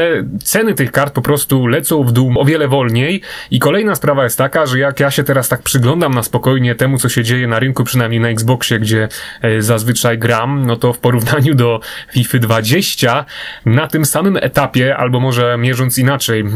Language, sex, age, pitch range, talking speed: Polish, male, 30-49, 120-140 Hz, 190 wpm